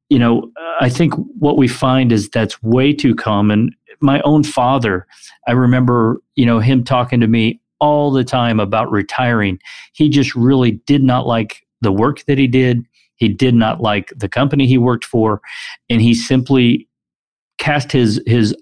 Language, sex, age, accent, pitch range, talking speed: English, male, 40-59, American, 110-130 Hz, 175 wpm